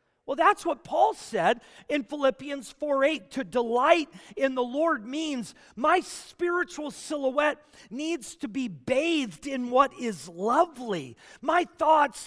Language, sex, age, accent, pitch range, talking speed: English, male, 40-59, American, 200-290 Hz, 130 wpm